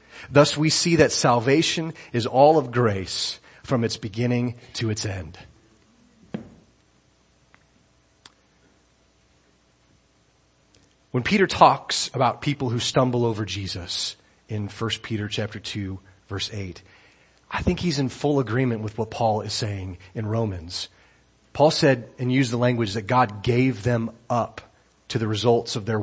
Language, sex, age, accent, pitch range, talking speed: English, male, 30-49, American, 105-130 Hz, 140 wpm